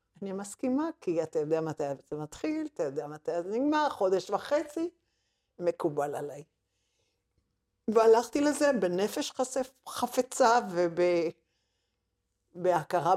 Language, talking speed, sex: Hebrew, 105 wpm, female